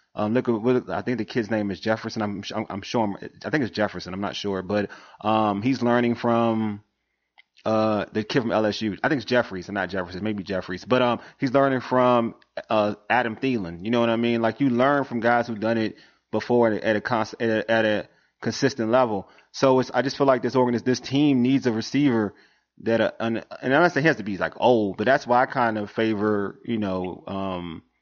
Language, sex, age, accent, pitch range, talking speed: English, male, 20-39, American, 105-120 Hz, 225 wpm